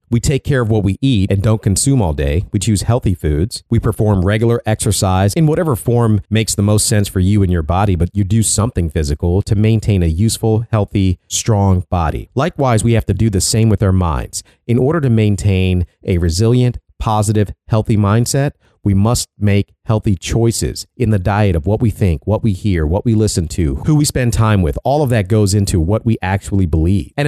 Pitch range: 95-115 Hz